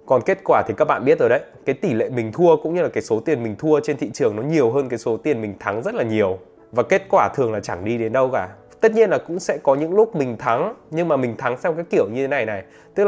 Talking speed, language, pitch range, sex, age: 310 wpm, Vietnamese, 120-180 Hz, male, 20-39